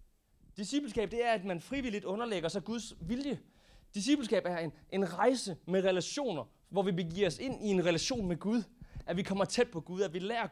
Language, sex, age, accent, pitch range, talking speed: Danish, male, 30-49, native, 165-225 Hz, 205 wpm